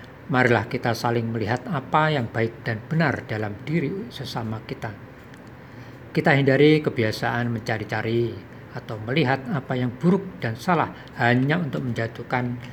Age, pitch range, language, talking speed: 50-69, 115-135 Hz, Indonesian, 125 wpm